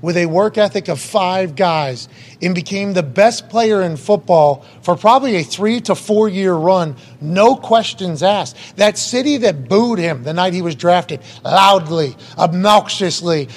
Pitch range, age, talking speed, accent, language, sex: 175-220 Hz, 30-49, 160 wpm, American, English, male